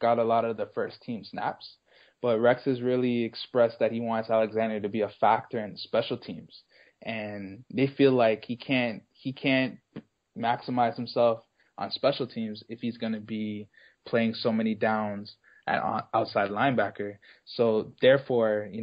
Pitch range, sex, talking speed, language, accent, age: 110-125 Hz, male, 165 wpm, English, American, 20-39